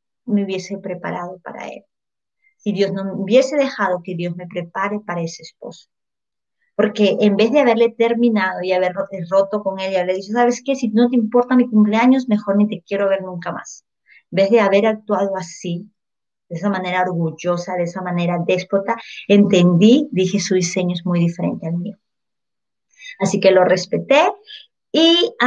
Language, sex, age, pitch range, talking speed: Spanish, female, 30-49, 185-230 Hz, 175 wpm